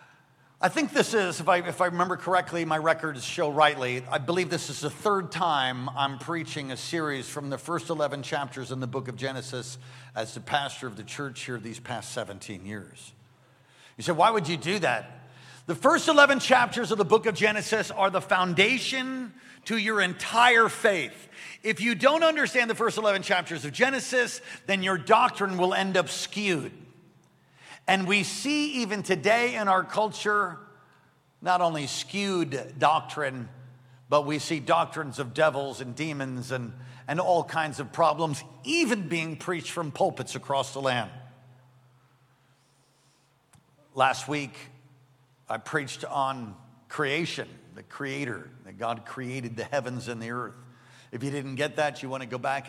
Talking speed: 165 wpm